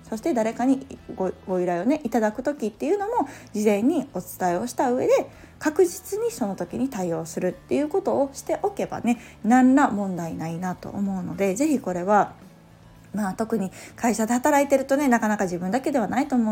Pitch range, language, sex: 185-280 Hz, Japanese, female